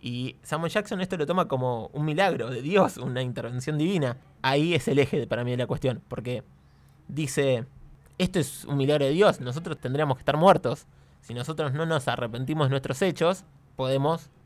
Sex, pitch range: male, 130-155 Hz